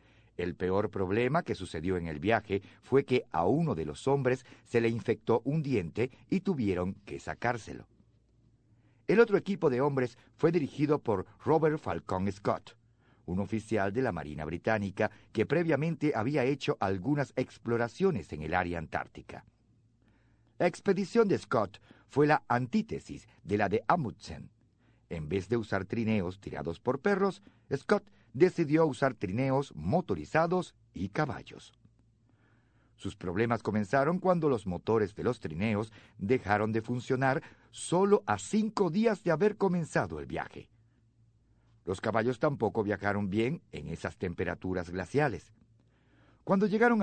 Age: 50-69